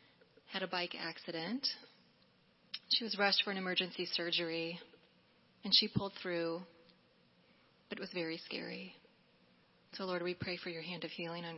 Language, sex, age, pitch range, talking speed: English, female, 30-49, 170-200 Hz, 155 wpm